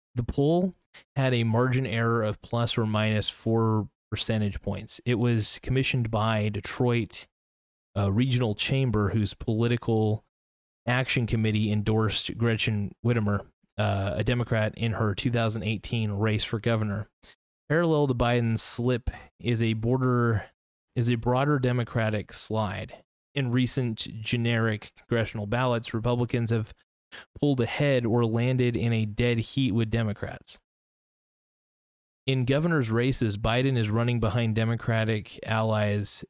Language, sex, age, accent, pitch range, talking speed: English, male, 30-49, American, 110-125 Hz, 125 wpm